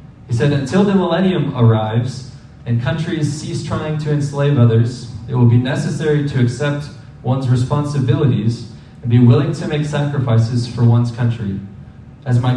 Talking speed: 155 wpm